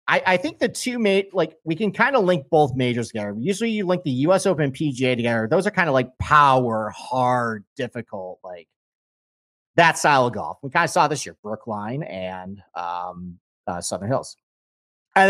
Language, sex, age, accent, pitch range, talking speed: English, male, 30-49, American, 115-175 Hz, 195 wpm